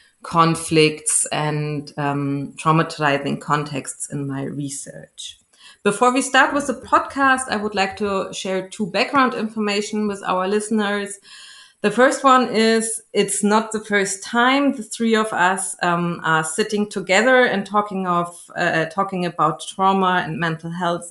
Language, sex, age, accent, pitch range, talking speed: English, female, 30-49, German, 180-225 Hz, 150 wpm